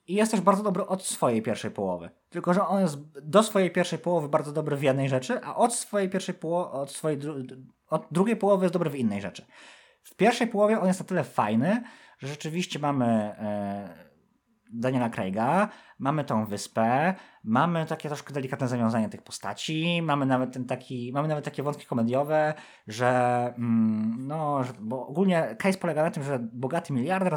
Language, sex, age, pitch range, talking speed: Polish, male, 20-39, 115-170 Hz, 180 wpm